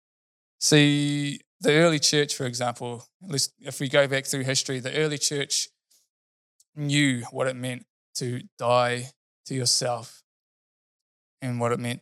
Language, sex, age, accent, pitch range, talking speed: English, male, 20-39, Australian, 120-140 Hz, 135 wpm